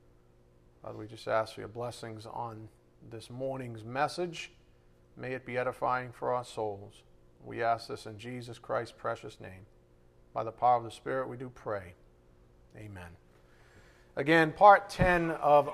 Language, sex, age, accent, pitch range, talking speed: English, male, 40-59, American, 105-150 Hz, 155 wpm